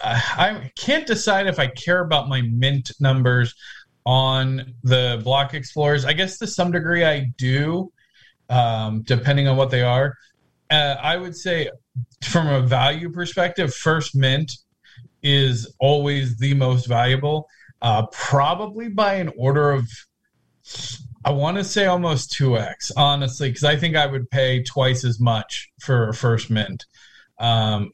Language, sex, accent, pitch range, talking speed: English, male, American, 120-145 Hz, 150 wpm